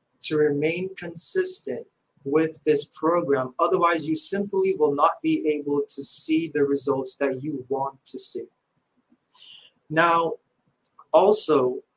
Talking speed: 120 wpm